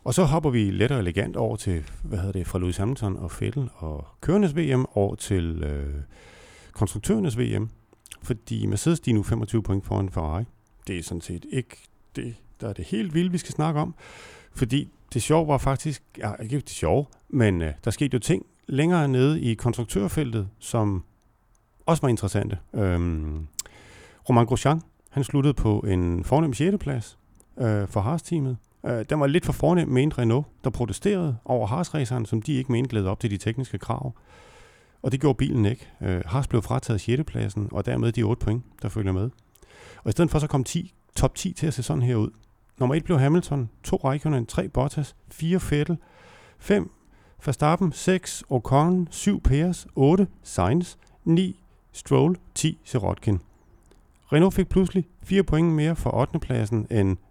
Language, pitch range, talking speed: Danish, 105-150 Hz, 180 wpm